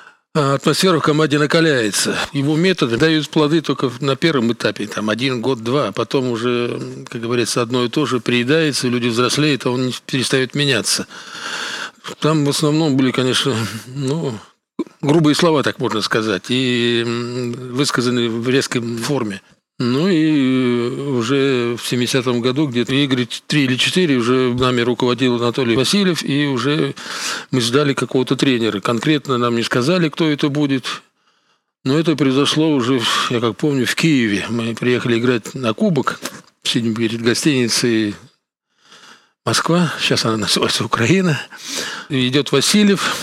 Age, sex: 50-69, male